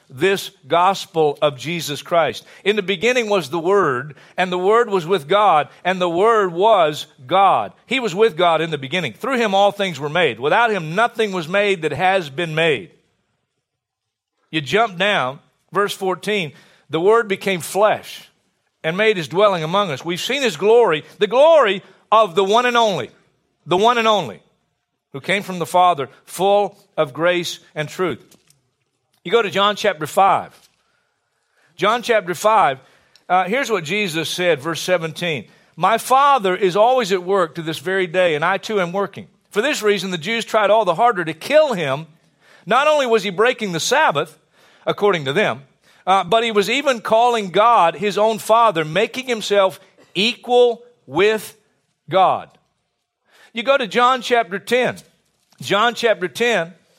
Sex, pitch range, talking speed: male, 165-220 Hz, 170 wpm